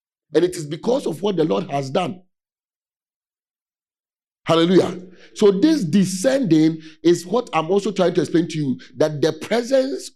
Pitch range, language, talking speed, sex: 155-205 Hz, English, 155 wpm, male